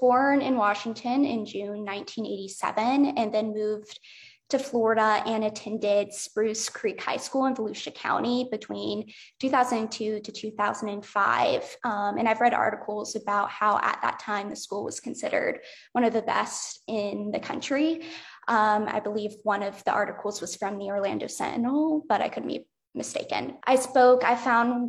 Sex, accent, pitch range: female, American, 210-245 Hz